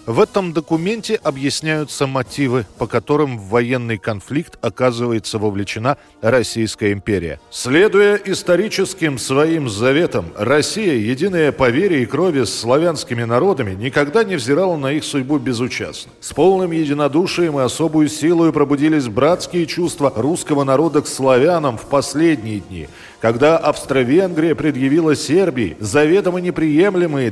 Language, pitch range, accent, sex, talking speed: Russian, 110-150 Hz, native, male, 125 wpm